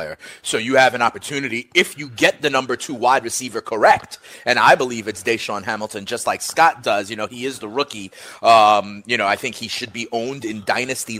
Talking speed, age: 220 wpm, 30-49